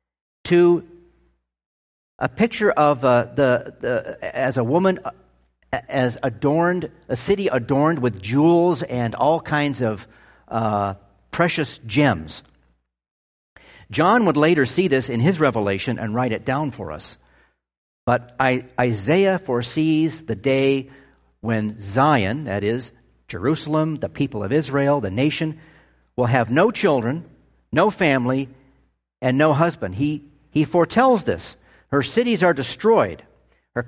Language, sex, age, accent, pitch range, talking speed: English, male, 50-69, American, 90-155 Hz, 130 wpm